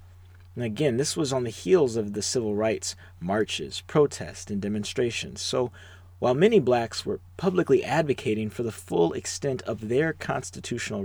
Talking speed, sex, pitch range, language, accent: 155 wpm, male, 90-110 Hz, English, American